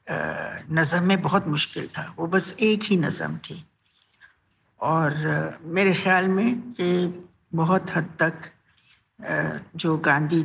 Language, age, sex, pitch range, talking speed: Marathi, 60-79, female, 160-225 Hz, 100 wpm